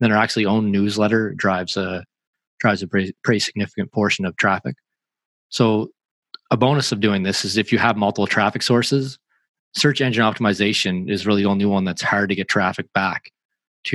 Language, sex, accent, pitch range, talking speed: English, male, American, 100-115 Hz, 185 wpm